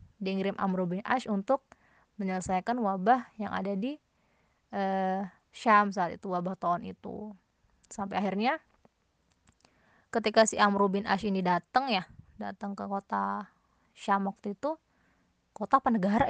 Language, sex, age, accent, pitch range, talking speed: Indonesian, female, 20-39, native, 190-220 Hz, 125 wpm